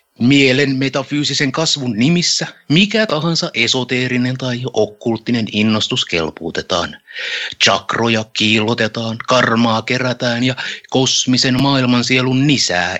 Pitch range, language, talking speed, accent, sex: 115-150 Hz, Finnish, 90 wpm, native, male